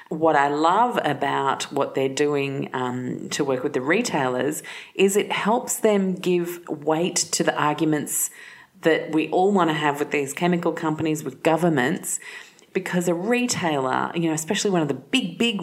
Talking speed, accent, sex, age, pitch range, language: 175 wpm, Australian, female, 30-49, 130-170 Hz, English